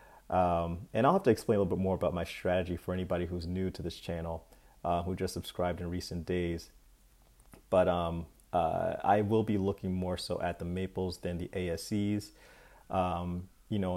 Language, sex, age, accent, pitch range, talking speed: English, male, 30-49, American, 90-100 Hz, 195 wpm